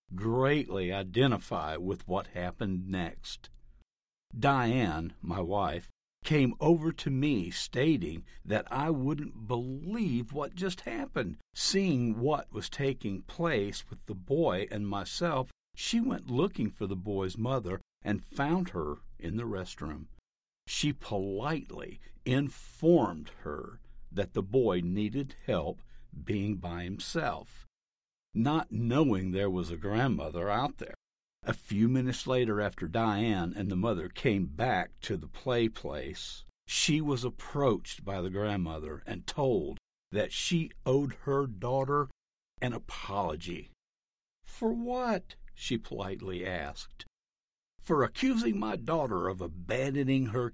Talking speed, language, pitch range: 125 wpm, English, 95-140 Hz